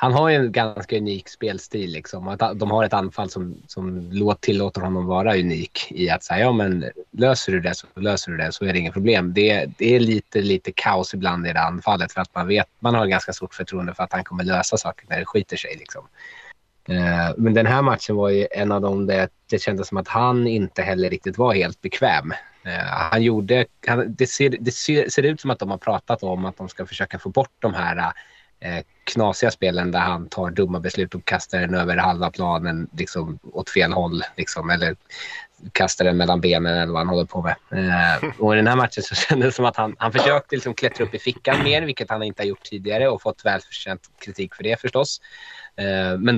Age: 20-39